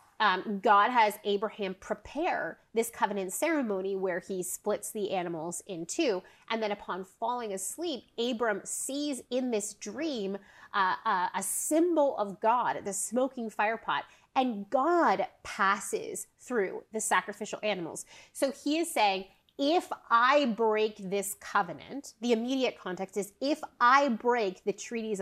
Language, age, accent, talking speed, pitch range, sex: English, 30-49, American, 140 wpm, 195-255 Hz, female